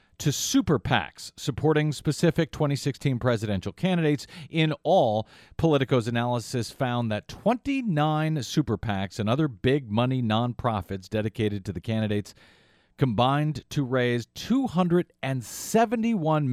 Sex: male